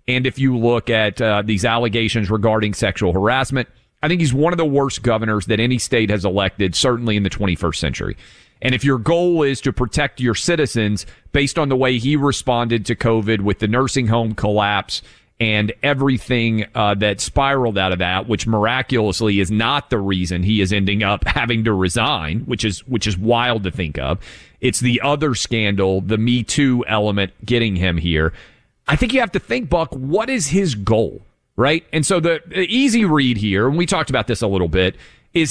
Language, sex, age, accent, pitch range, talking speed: English, male, 40-59, American, 105-140 Hz, 200 wpm